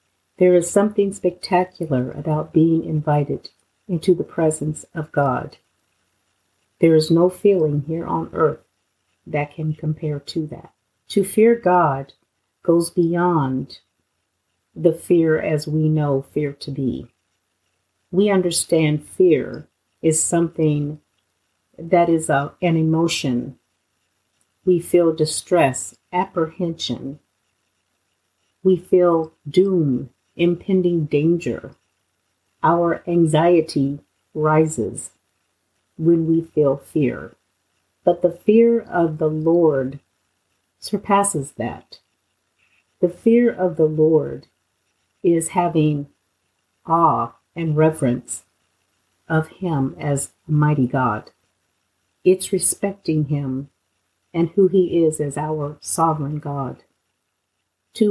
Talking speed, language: 100 wpm, English